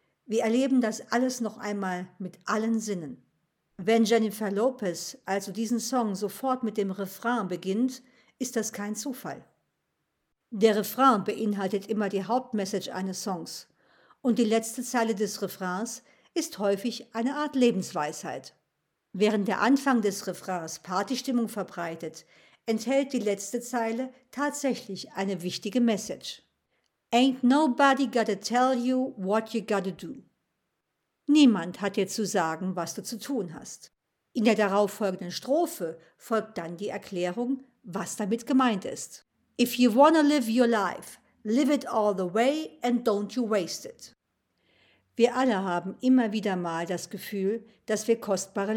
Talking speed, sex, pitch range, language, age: 145 wpm, female, 195-245 Hz, German, 50-69